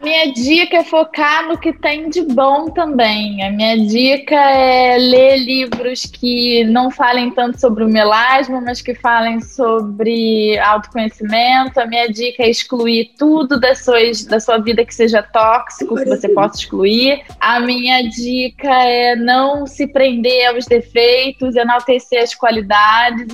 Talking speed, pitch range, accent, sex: 145 wpm, 230-270 Hz, Brazilian, female